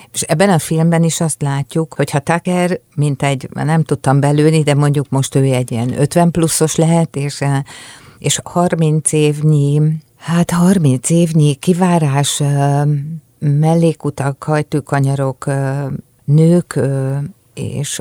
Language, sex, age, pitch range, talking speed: Hungarian, female, 50-69, 130-155 Hz, 120 wpm